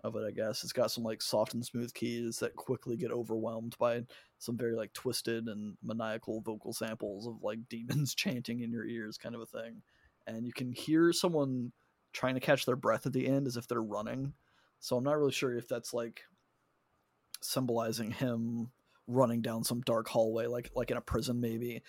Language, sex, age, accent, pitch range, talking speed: English, male, 20-39, American, 115-130 Hz, 205 wpm